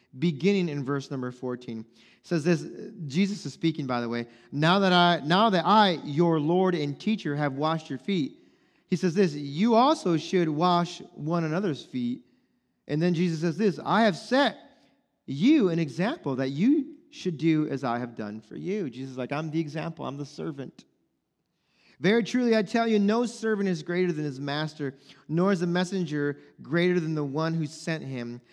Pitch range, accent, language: 135-180 Hz, American, English